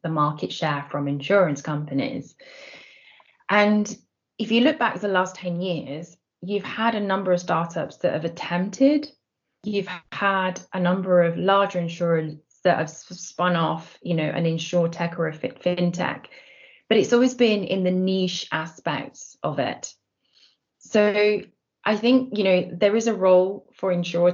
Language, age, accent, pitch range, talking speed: English, 20-39, British, 170-195 Hz, 165 wpm